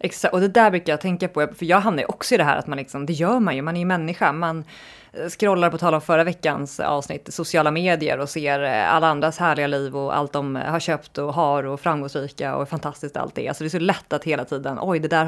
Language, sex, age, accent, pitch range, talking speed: Swedish, female, 30-49, native, 145-180 Hz, 265 wpm